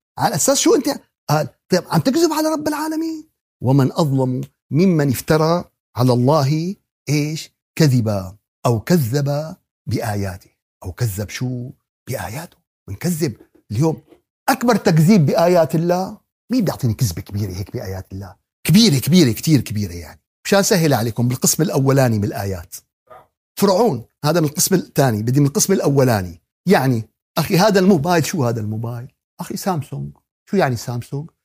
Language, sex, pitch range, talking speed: Arabic, male, 125-200 Hz, 135 wpm